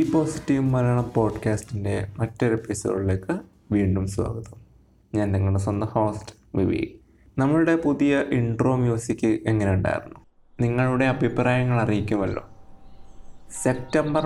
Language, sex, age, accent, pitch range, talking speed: Malayalam, male, 20-39, native, 100-130 Hz, 95 wpm